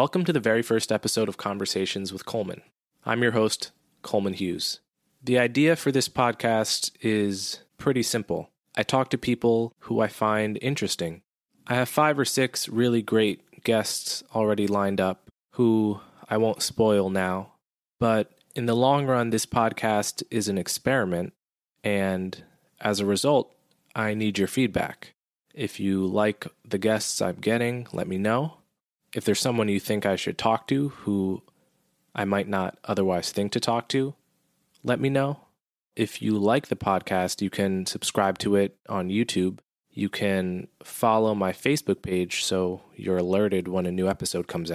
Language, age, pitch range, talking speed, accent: English, 20-39, 100-120 Hz, 165 wpm, American